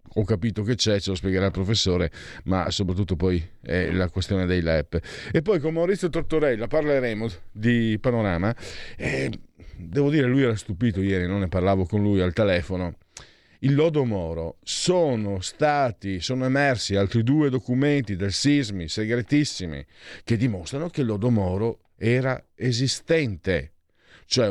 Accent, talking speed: native, 145 wpm